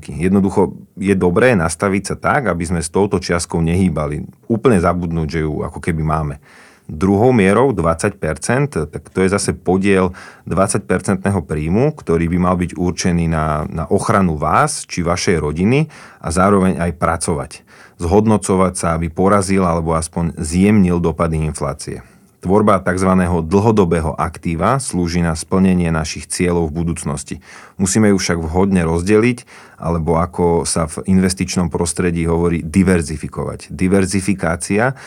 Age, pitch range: 40-59, 80-95 Hz